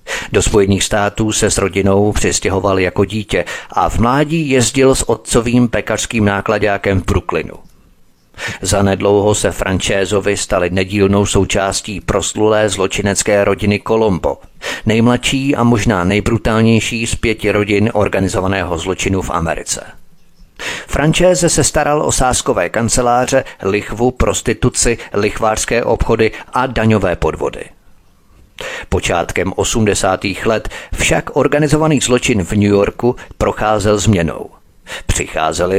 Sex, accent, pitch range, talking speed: male, native, 100-120 Hz, 110 wpm